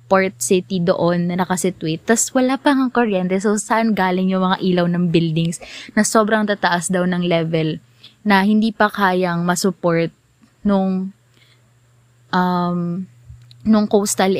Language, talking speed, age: Filipino, 140 wpm, 20-39